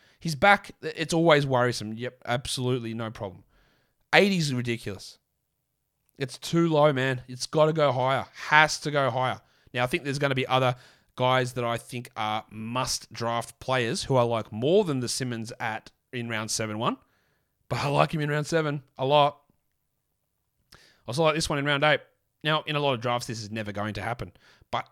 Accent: Australian